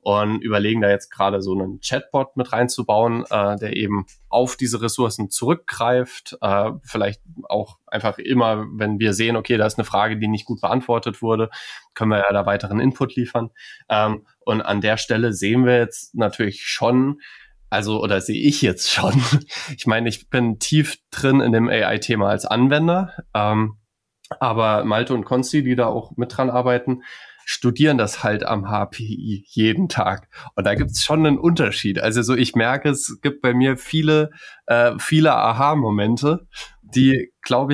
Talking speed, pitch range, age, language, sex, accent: 170 wpm, 110-130 Hz, 20-39, German, male, German